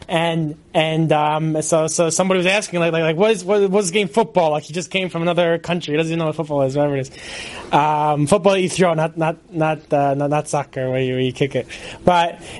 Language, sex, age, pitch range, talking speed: English, male, 20-39, 185-235 Hz, 260 wpm